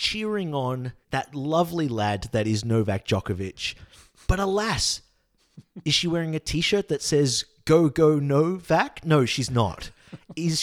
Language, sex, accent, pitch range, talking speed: English, male, Australian, 130-185 Hz, 140 wpm